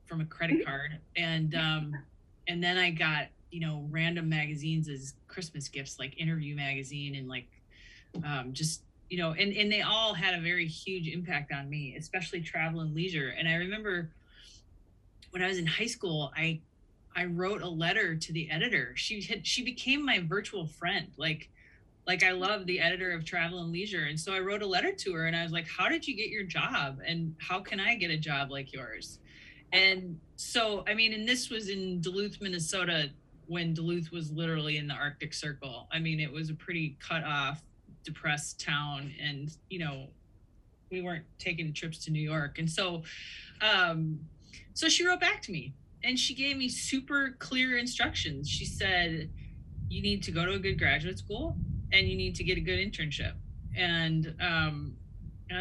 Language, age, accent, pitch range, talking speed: English, 20-39, American, 150-185 Hz, 190 wpm